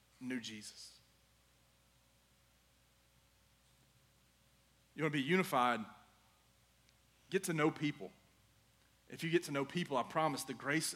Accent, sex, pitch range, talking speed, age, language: American, male, 115-175 Hz, 115 wpm, 30-49, English